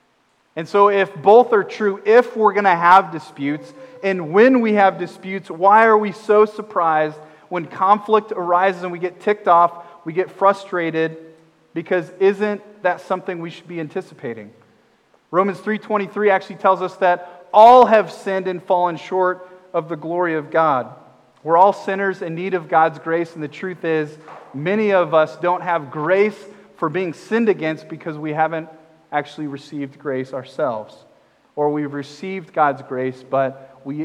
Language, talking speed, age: English, 165 wpm, 30-49